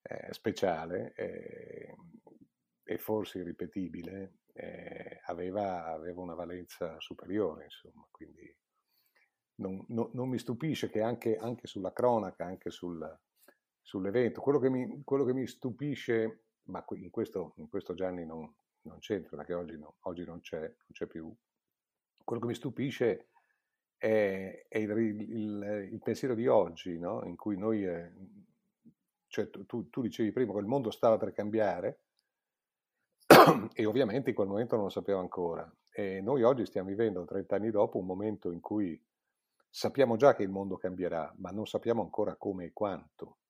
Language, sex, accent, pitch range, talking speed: Italian, male, native, 90-115 Hz, 145 wpm